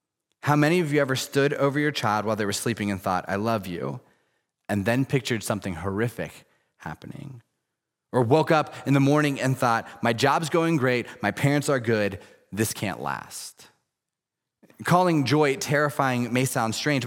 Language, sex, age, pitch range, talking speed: English, male, 30-49, 115-150 Hz, 170 wpm